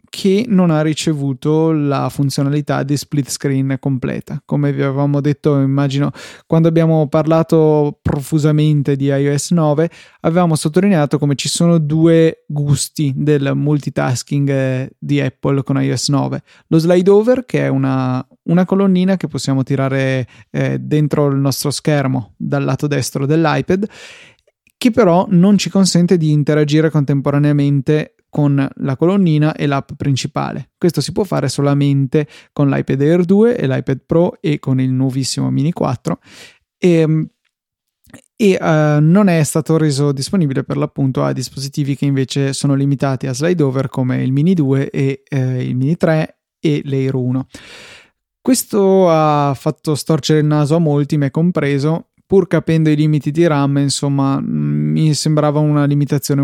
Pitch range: 140-160 Hz